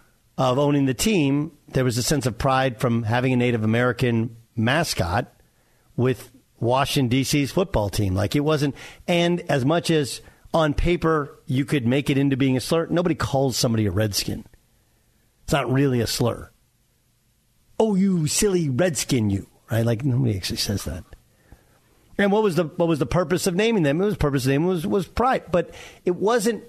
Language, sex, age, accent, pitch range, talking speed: English, male, 50-69, American, 125-165 Hz, 185 wpm